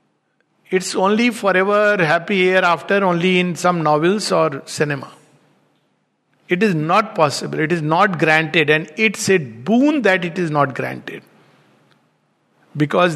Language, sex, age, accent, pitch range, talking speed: English, male, 60-79, Indian, 155-200 Hz, 135 wpm